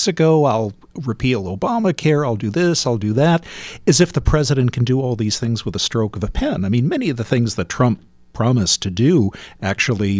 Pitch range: 105-130 Hz